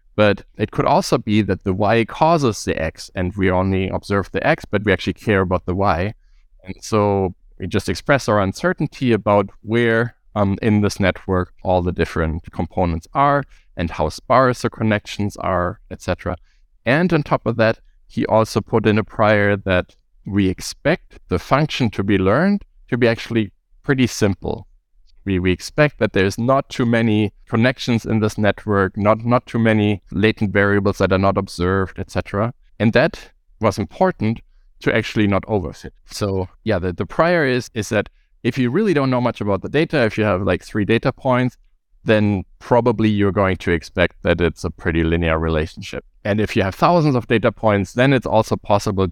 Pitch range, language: 95-115 Hz, English